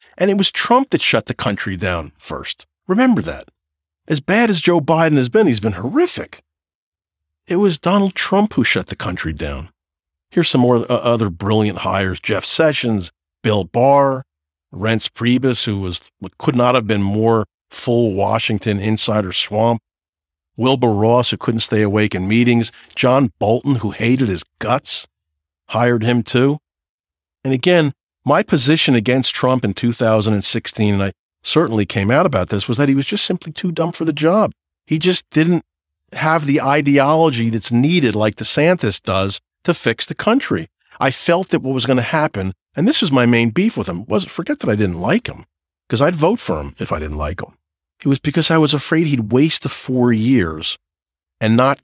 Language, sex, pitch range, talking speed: English, male, 95-150 Hz, 185 wpm